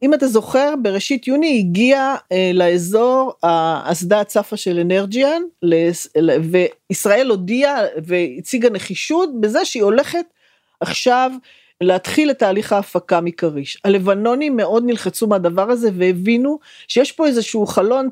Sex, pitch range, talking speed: female, 180-250 Hz, 115 wpm